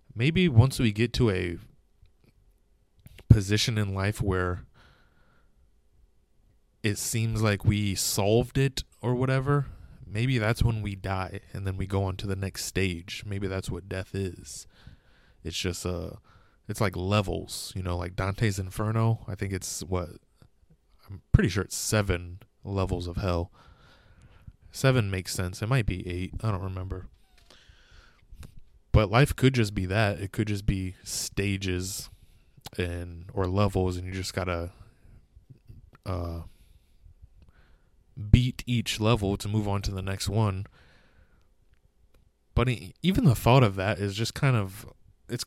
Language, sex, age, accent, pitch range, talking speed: English, male, 20-39, American, 90-110 Hz, 145 wpm